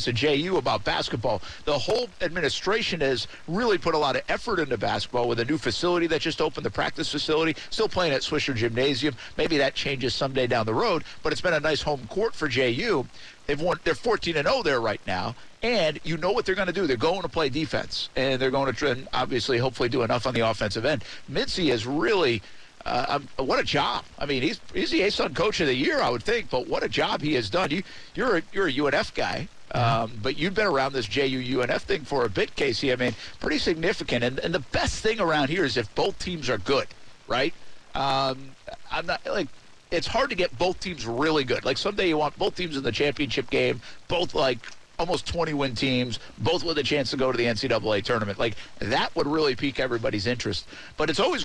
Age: 50-69